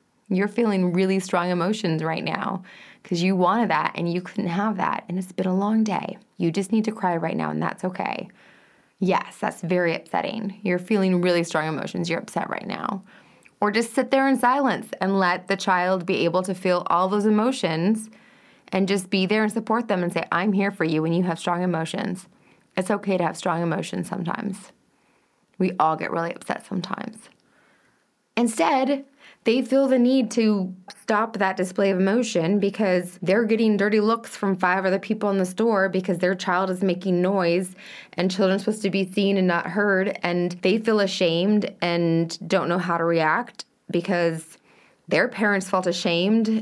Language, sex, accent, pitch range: English, female, American, 175-215 Hz